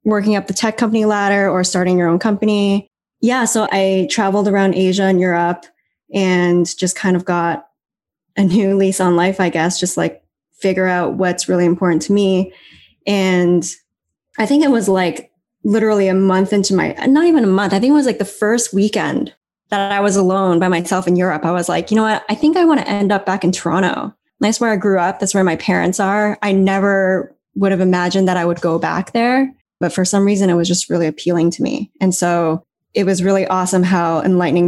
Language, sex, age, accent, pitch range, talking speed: English, female, 10-29, American, 175-205 Hz, 220 wpm